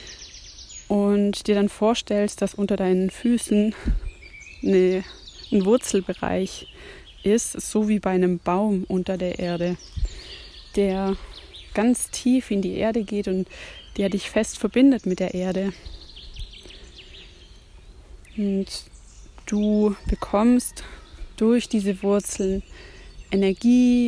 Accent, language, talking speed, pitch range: German, German, 100 wpm, 190-220 Hz